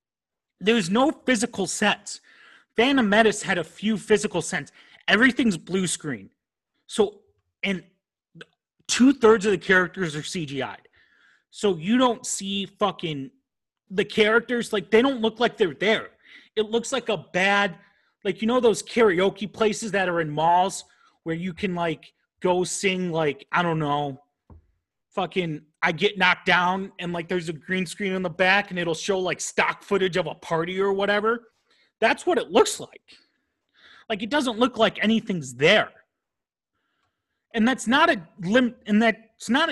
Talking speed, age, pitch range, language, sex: 160 wpm, 30-49, 175-225 Hz, English, male